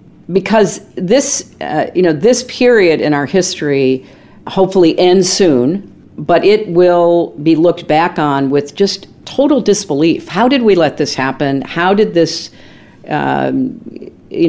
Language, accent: English, American